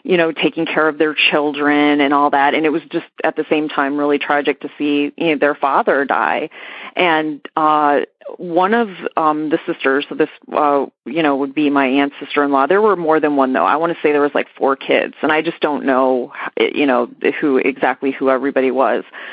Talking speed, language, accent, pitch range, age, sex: 220 wpm, English, American, 140-160 Hz, 30-49, female